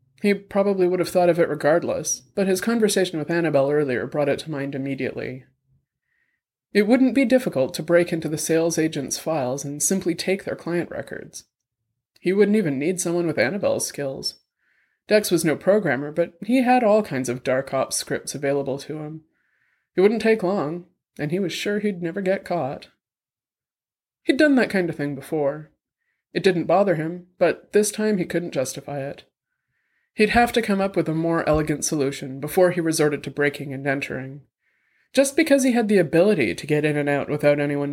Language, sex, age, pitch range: English, male, 30-49, 140-190 Hz